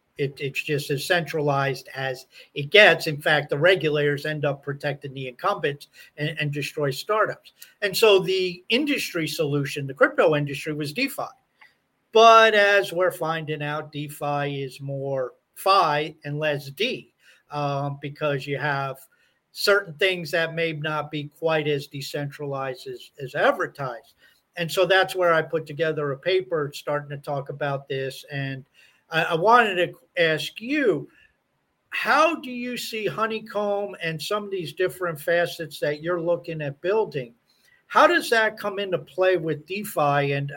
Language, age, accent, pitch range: English, 50-69, American, 145-185 Hz